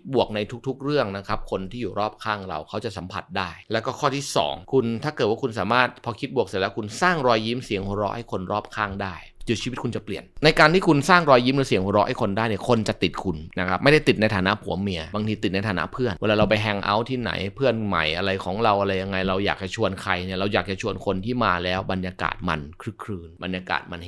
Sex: male